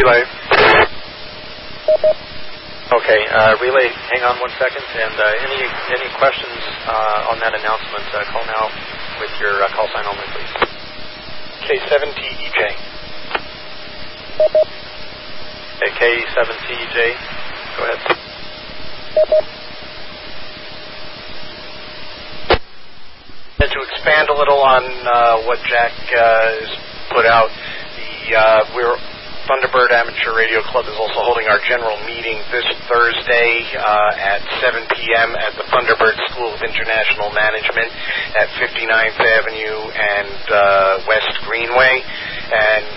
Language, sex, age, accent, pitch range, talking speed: English, male, 40-59, American, 105-115 Hz, 105 wpm